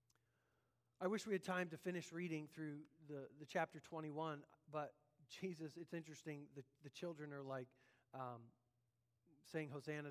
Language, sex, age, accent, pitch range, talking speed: English, male, 40-59, American, 135-170 Hz, 150 wpm